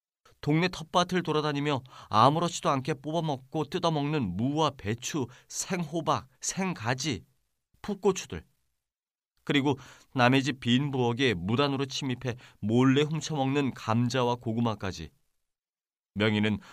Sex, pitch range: male, 95-145 Hz